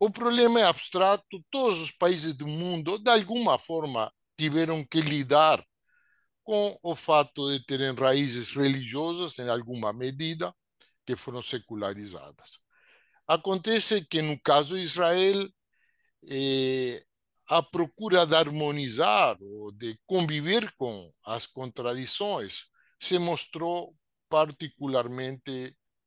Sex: male